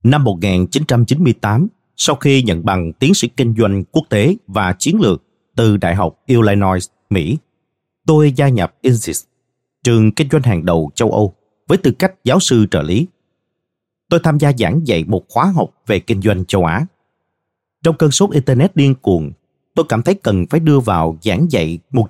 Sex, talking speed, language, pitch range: male, 180 wpm, Vietnamese, 100-145 Hz